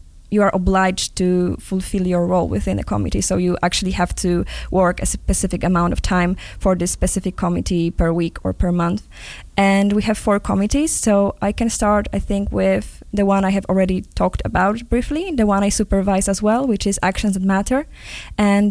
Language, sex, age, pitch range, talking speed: English, female, 10-29, 180-205 Hz, 200 wpm